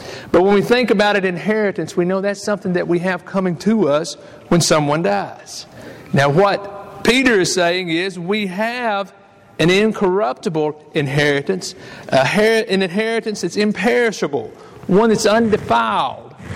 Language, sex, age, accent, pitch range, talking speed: English, male, 50-69, American, 145-205 Hz, 145 wpm